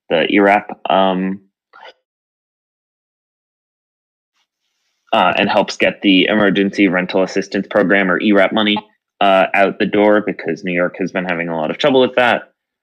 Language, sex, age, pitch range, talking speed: English, male, 20-39, 90-110 Hz, 145 wpm